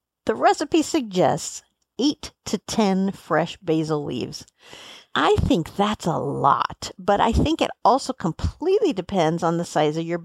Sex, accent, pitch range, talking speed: female, American, 175-220 Hz, 150 wpm